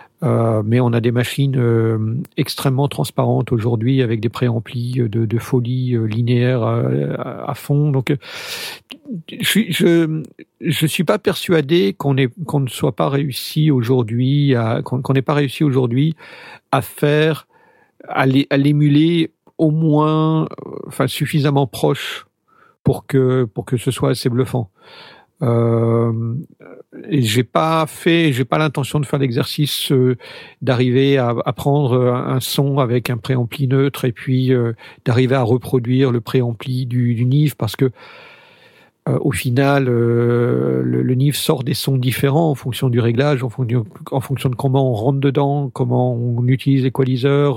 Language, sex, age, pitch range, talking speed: French, male, 50-69, 120-145 Hz, 155 wpm